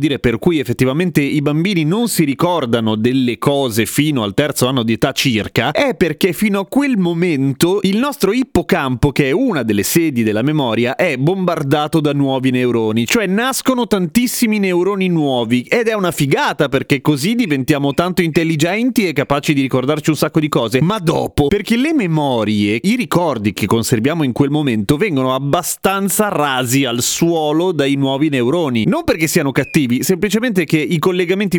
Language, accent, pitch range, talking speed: Italian, native, 130-180 Hz, 170 wpm